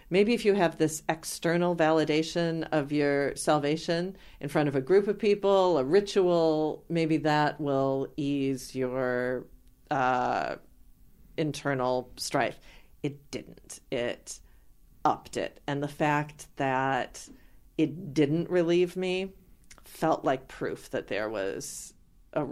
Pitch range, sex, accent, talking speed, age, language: 145-190 Hz, female, American, 125 wpm, 40-59, English